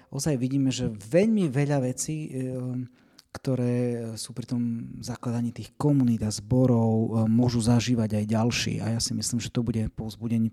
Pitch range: 115-140 Hz